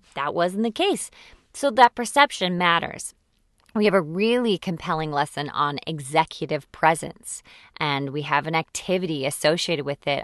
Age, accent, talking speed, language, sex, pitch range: 20-39, American, 145 wpm, English, female, 150-195 Hz